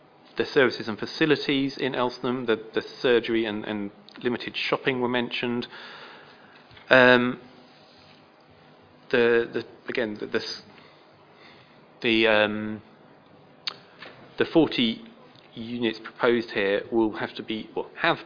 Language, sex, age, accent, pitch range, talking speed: English, male, 30-49, British, 100-125 Hz, 120 wpm